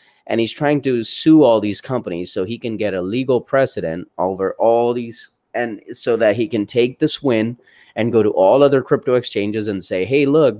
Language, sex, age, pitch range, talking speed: English, male, 30-49, 105-140 Hz, 210 wpm